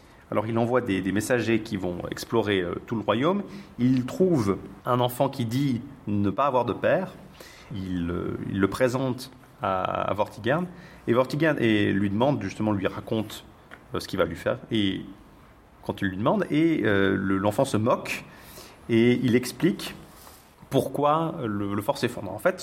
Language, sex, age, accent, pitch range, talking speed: French, male, 40-59, French, 100-135 Hz, 180 wpm